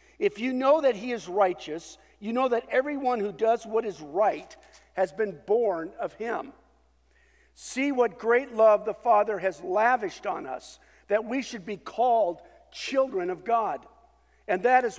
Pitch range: 195-255 Hz